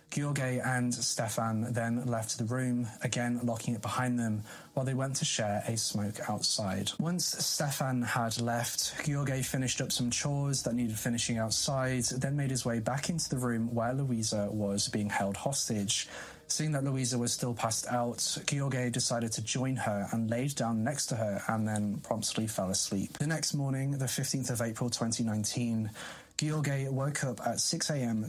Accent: British